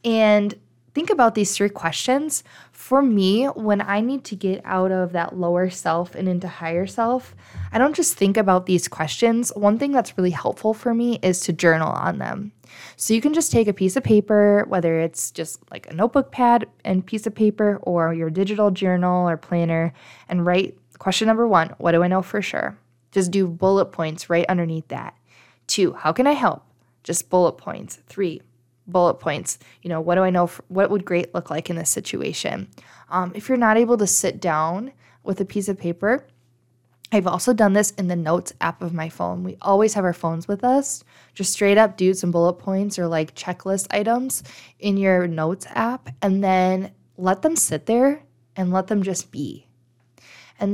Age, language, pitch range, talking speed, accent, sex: 20-39, English, 170-215 Hz, 200 wpm, American, female